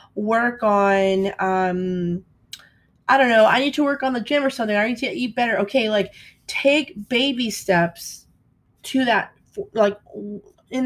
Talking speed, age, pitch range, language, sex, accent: 160 wpm, 20-39, 185-235 Hz, English, female, American